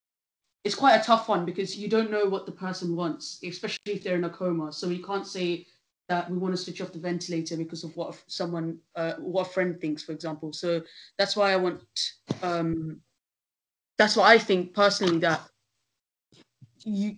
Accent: British